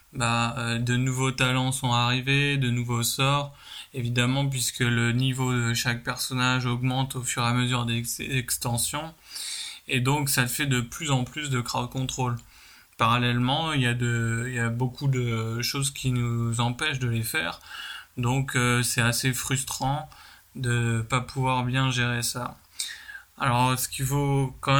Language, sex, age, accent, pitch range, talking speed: French, male, 20-39, French, 120-135 Hz, 160 wpm